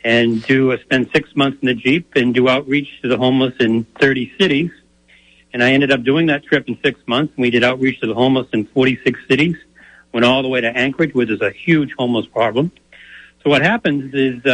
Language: English